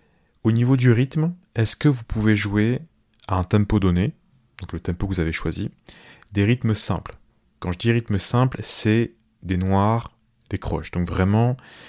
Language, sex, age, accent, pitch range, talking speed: French, male, 30-49, French, 90-115 Hz, 175 wpm